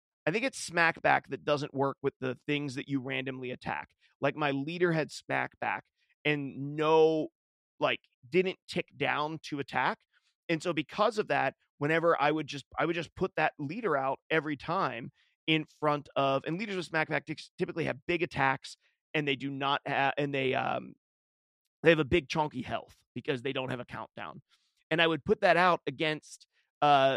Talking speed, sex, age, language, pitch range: 190 wpm, male, 30-49, English, 135-165 Hz